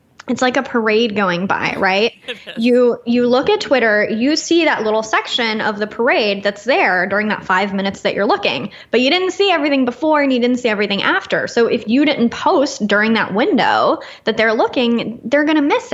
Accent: American